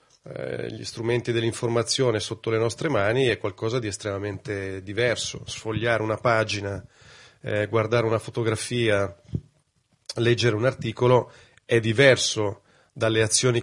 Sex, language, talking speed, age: male, Italian, 115 wpm, 30-49